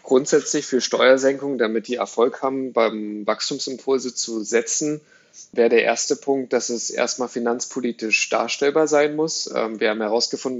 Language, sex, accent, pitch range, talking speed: German, male, German, 115-130 Hz, 140 wpm